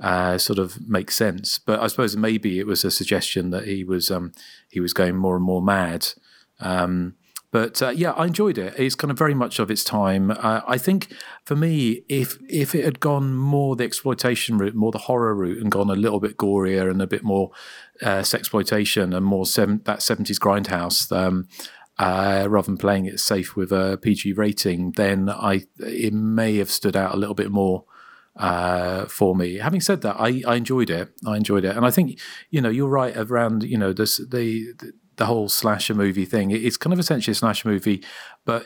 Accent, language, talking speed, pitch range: British, English, 210 wpm, 95-115 Hz